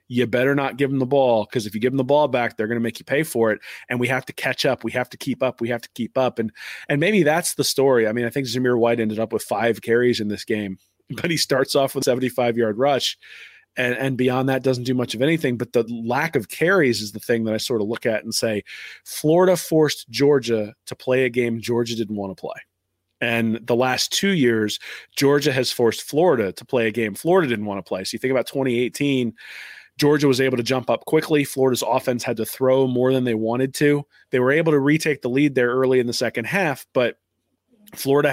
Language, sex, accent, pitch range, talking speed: English, male, American, 115-140 Hz, 250 wpm